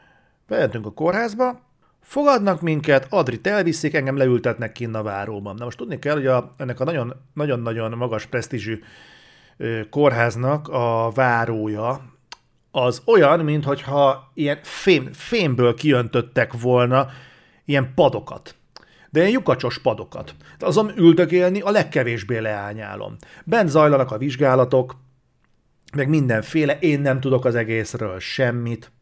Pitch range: 120-150 Hz